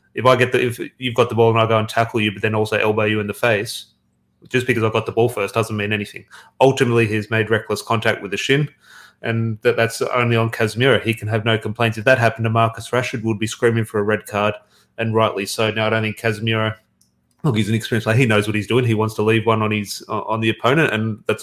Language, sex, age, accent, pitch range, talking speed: English, male, 30-49, Australian, 110-115 Hz, 265 wpm